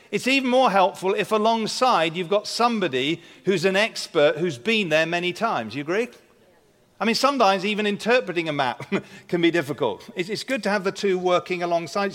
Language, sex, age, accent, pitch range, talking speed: English, male, 50-69, British, 170-225 Hz, 185 wpm